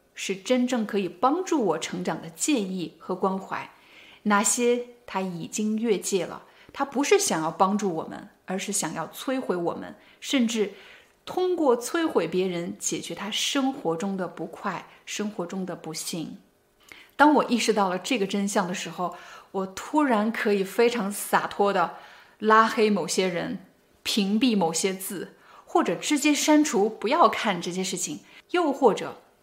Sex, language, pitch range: female, Chinese, 185-255 Hz